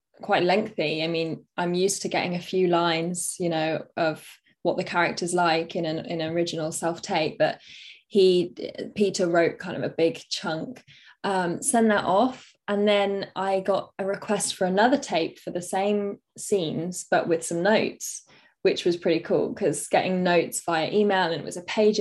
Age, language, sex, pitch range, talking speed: 10-29, English, female, 170-205 Hz, 185 wpm